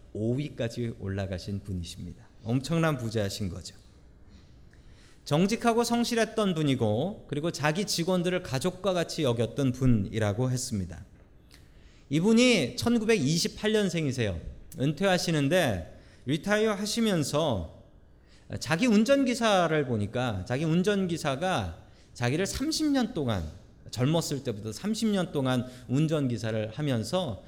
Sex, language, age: male, Korean, 40-59